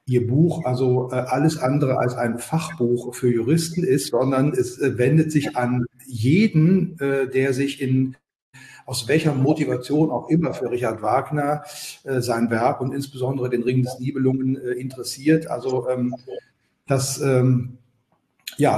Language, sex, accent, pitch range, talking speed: German, male, German, 125-145 Hz, 150 wpm